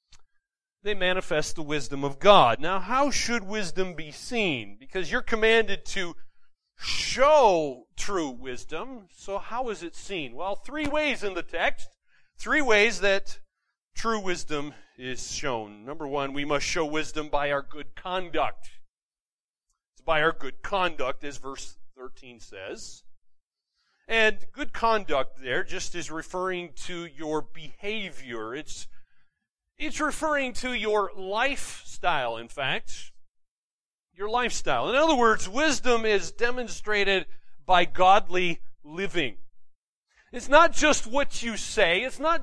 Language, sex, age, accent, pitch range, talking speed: English, male, 40-59, American, 155-245 Hz, 130 wpm